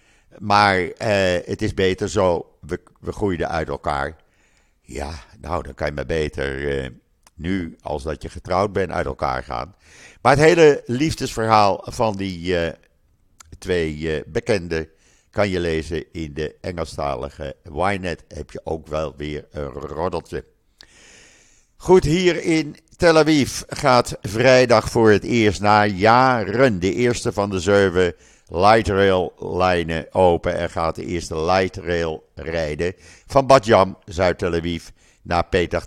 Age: 50-69